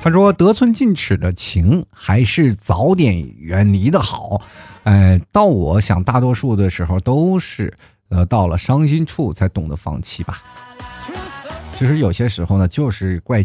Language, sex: Chinese, male